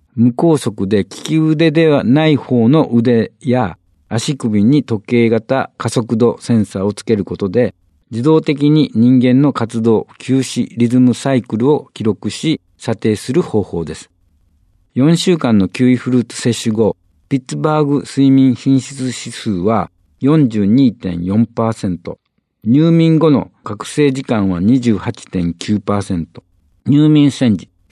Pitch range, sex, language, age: 100-140 Hz, male, Japanese, 50-69